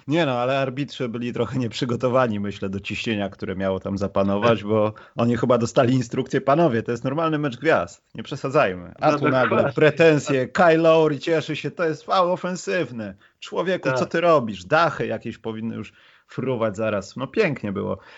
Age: 30-49